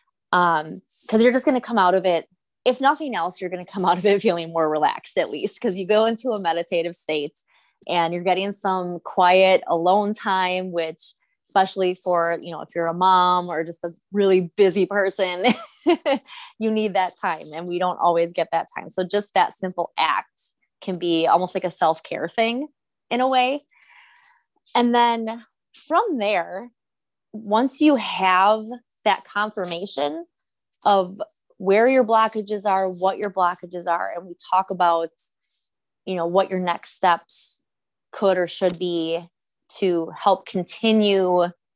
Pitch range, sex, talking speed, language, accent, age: 175-215 Hz, female, 165 wpm, English, American, 20-39